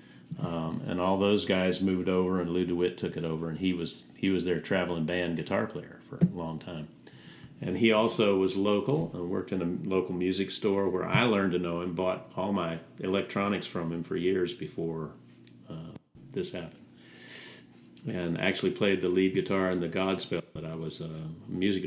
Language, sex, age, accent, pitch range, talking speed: English, male, 50-69, American, 90-105 Hz, 195 wpm